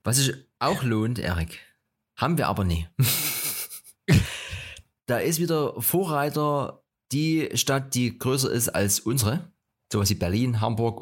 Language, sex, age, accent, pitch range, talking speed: German, male, 30-49, German, 105-145 Hz, 135 wpm